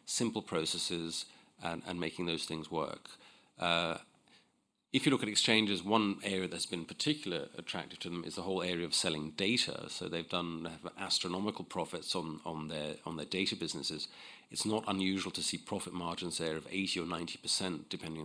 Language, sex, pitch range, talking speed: English, male, 80-100 Hz, 175 wpm